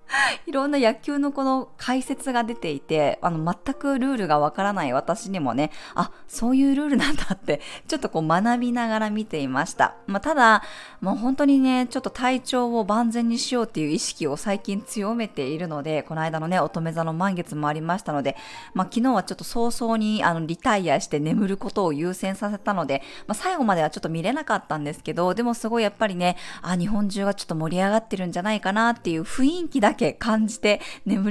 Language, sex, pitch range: Japanese, female, 170-255 Hz